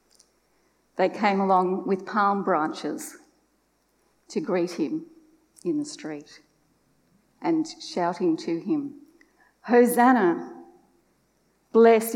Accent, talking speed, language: Australian, 90 wpm, English